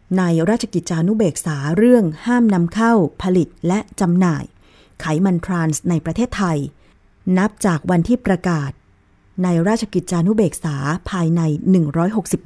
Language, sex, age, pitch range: Thai, female, 20-39, 155-205 Hz